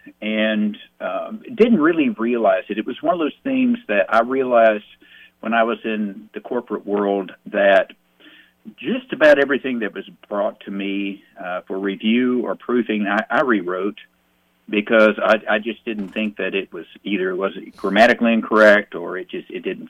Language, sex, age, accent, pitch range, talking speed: English, male, 50-69, American, 100-130 Hz, 175 wpm